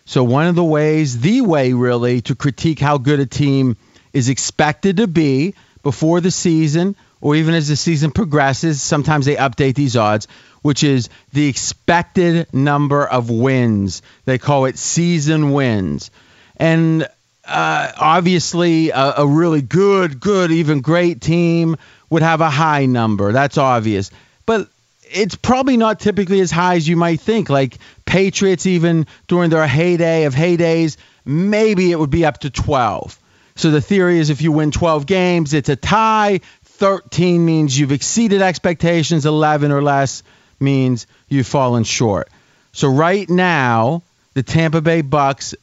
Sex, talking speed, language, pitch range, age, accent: male, 155 wpm, English, 135-170 Hz, 30-49, American